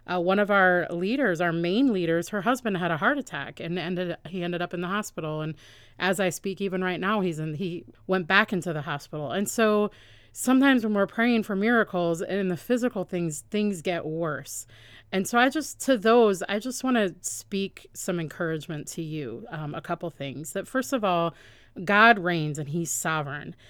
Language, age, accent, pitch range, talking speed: English, 30-49, American, 165-215 Hz, 205 wpm